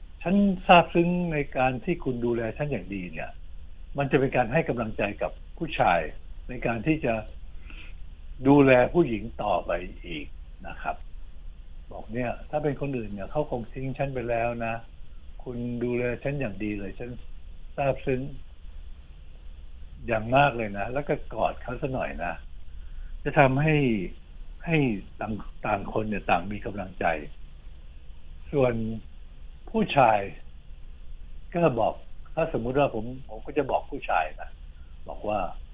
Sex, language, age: male, Thai, 60-79